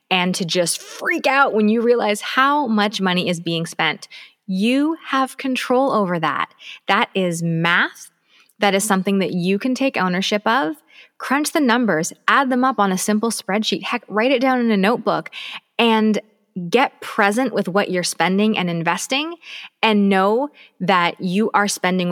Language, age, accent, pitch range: English, 20-39, American, 175-240 Hz